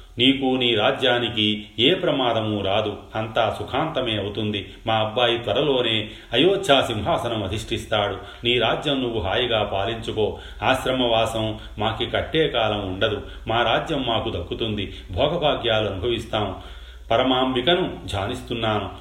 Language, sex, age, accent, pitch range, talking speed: Telugu, male, 30-49, native, 100-120 Hz, 105 wpm